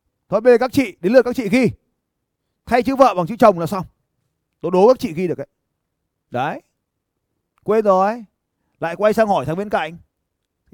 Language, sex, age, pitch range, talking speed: Vietnamese, male, 20-39, 135-215 Hz, 195 wpm